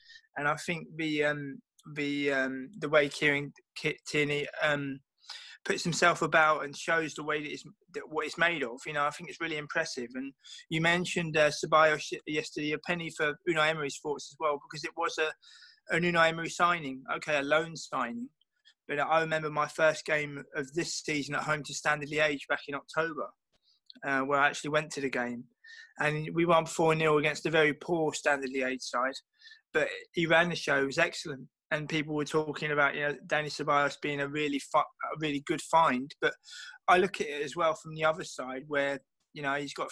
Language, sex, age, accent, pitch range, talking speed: English, male, 20-39, British, 145-165 Hz, 205 wpm